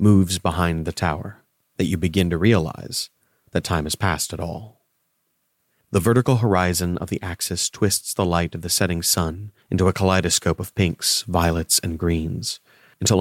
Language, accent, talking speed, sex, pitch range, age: English, American, 170 wpm, male, 85-100 Hz, 30-49